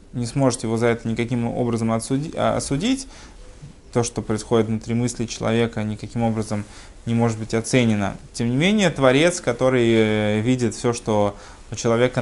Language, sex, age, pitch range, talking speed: Russian, male, 20-39, 110-135 Hz, 150 wpm